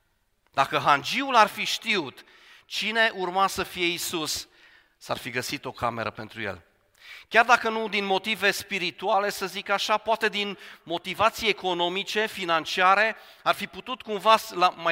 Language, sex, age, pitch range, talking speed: Romanian, male, 40-59, 150-200 Hz, 140 wpm